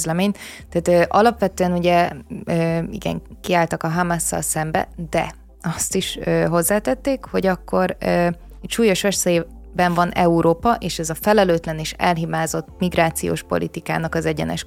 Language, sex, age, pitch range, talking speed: Hungarian, female, 20-39, 165-190 Hz, 140 wpm